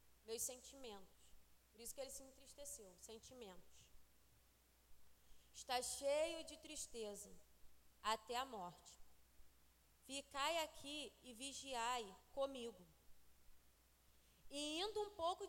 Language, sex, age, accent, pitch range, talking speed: Portuguese, female, 20-39, Brazilian, 190-285 Hz, 95 wpm